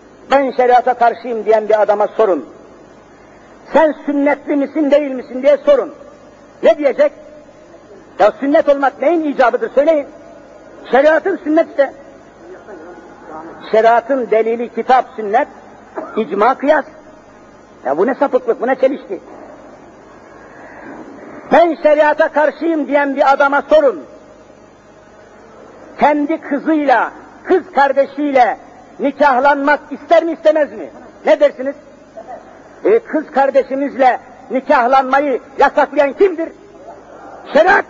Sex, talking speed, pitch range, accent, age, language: male, 100 wpm, 275-315 Hz, native, 50-69, Turkish